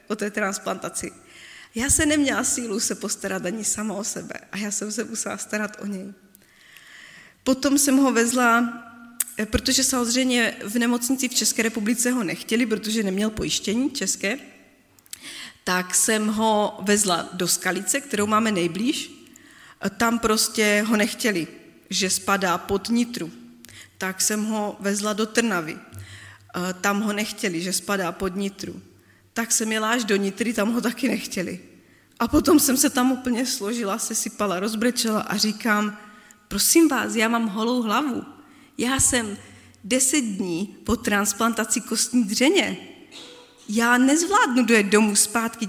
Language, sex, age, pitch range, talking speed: Slovak, female, 20-39, 200-245 Hz, 145 wpm